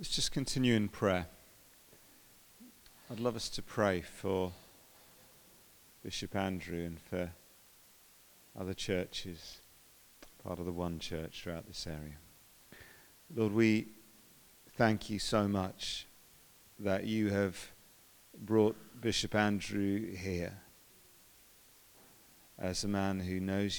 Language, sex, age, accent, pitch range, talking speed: English, male, 40-59, British, 95-110 Hz, 110 wpm